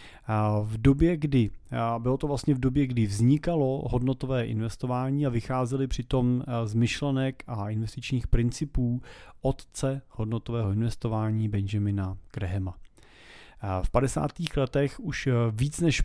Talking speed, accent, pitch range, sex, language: 115 wpm, native, 110-135 Hz, male, Czech